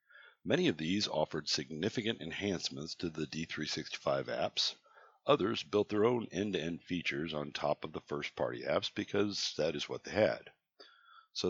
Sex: male